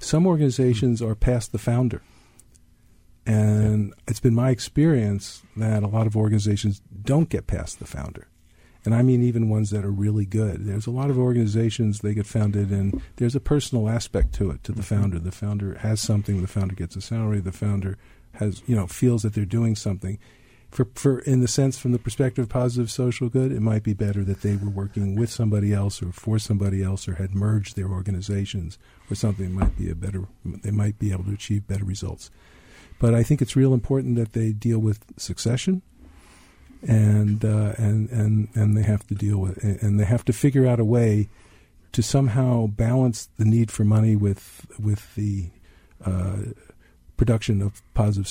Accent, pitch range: American, 100-120 Hz